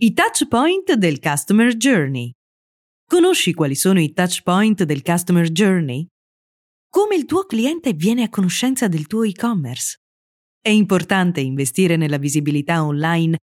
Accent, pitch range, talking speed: native, 150-230 Hz, 135 wpm